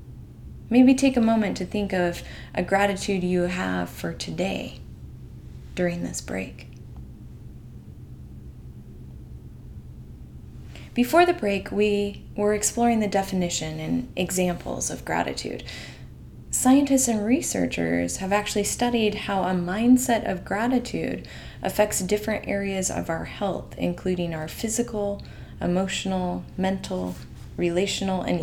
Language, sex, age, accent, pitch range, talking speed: English, female, 20-39, American, 170-205 Hz, 110 wpm